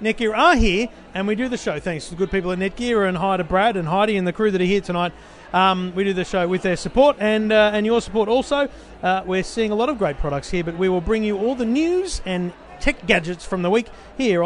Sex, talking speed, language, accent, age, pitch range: male, 275 wpm, English, Australian, 30-49, 185-235 Hz